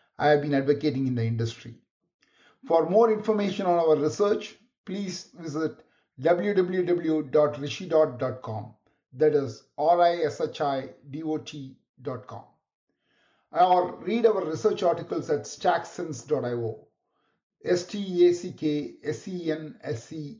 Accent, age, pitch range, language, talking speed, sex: Indian, 50-69, 135-175 Hz, English, 80 wpm, male